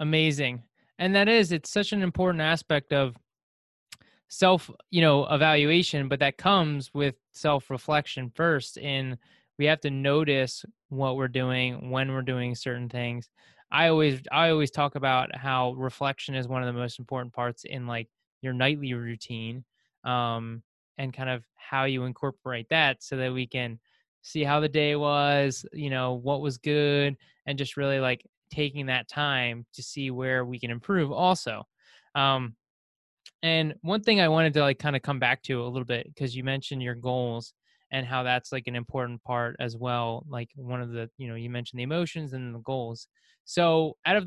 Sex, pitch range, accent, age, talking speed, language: male, 125-155 Hz, American, 20-39, 185 wpm, English